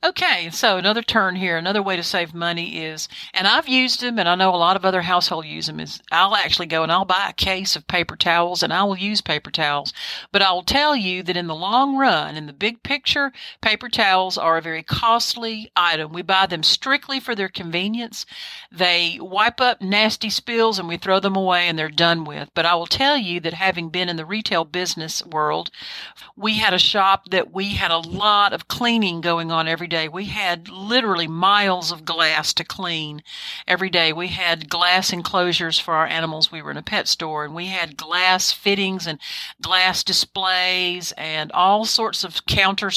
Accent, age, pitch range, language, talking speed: American, 50-69, 165-200 Hz, English, 210 wpm